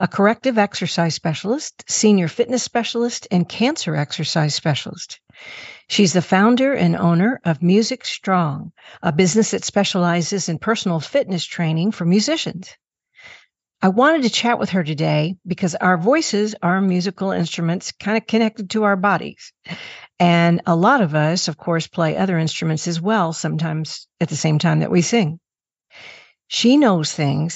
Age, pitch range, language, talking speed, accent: 50-69, 170-210 Hz, English, 155 wpm, American